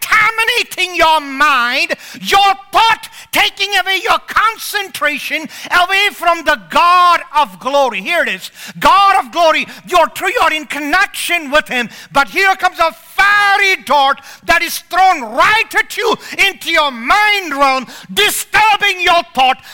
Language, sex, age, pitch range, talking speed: English, male, 50-69, 260-390 Hz, 145 wpm